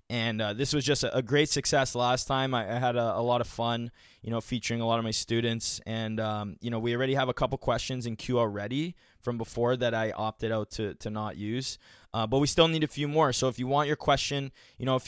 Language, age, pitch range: English, 20-39, 115-135 Hz